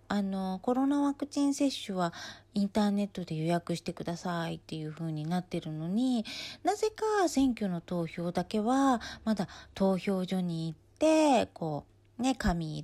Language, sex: Japanese, female